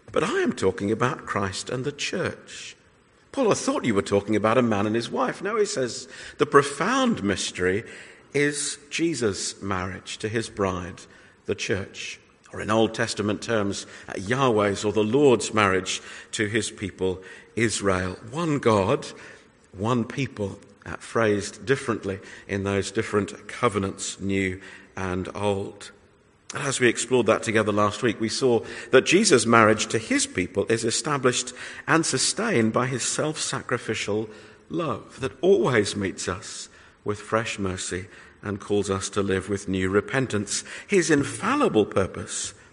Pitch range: 100-125 Hz